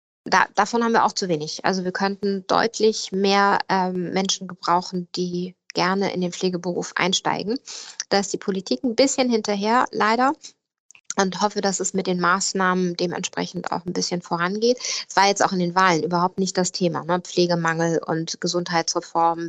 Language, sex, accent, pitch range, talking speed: German, female, German, 180-210 Hz, 170 wpm